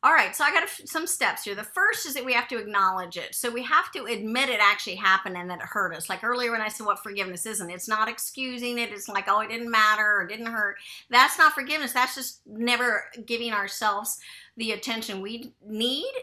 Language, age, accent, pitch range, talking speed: English, 50-69, American, 195-235 Hz, 235 wpm